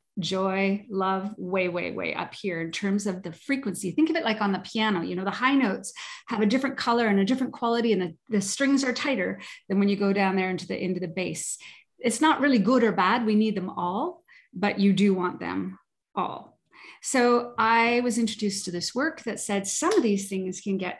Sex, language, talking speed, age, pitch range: female, English, 230 wpm, 30-49, 195-245 Hz